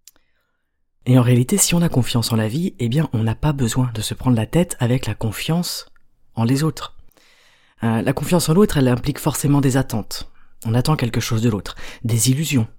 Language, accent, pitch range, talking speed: French, French, 115-150 Hz, 210 wpm